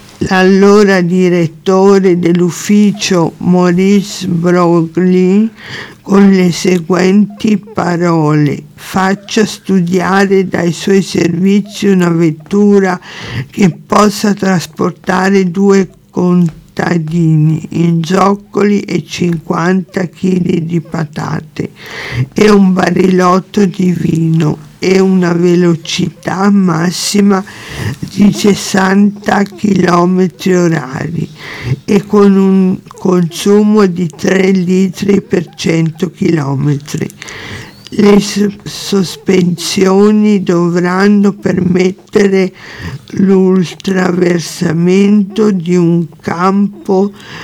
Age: 50-69